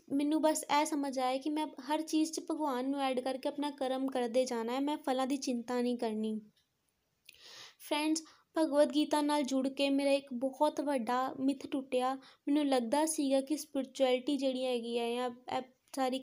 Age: 20-39